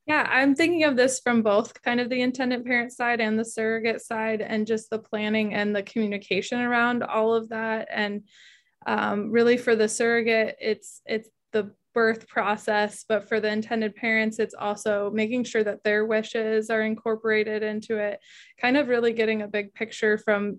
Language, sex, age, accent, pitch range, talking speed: English, female, 20-39, American, 210-225 Hz, 185 wpm